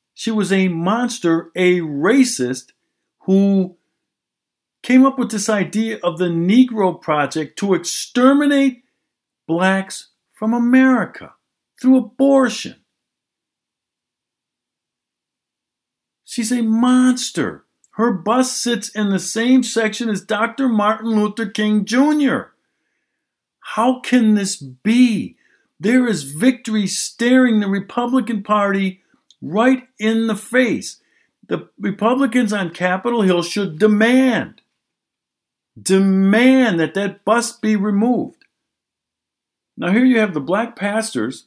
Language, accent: English, American